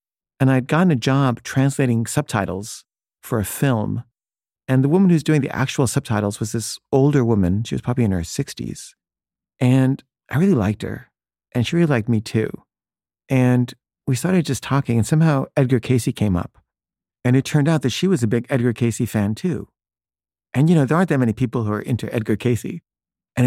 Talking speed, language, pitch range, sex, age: 195 wpm, English, 115-145 Hz, male, 40-59